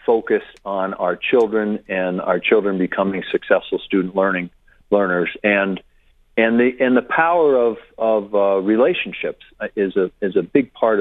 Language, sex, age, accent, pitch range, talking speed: English, male, 50-69, American, 95-135 Hz, 155 wpm